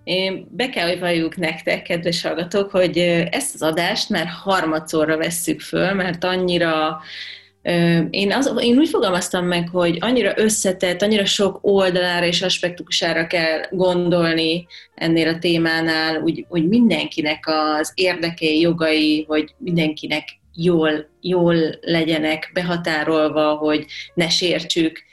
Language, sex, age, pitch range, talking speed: Hungarian, female, 30-49, 160-180 Hz, 120 wpm